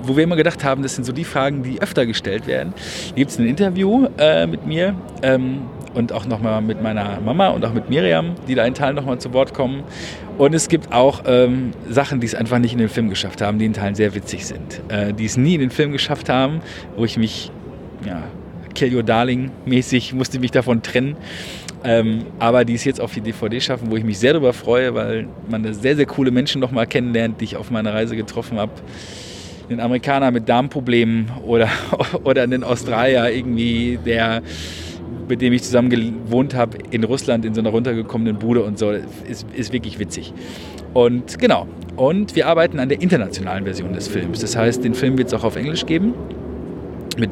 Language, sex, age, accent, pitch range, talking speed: German, male, 40-59, German, 110-130 Hz, 210 wpm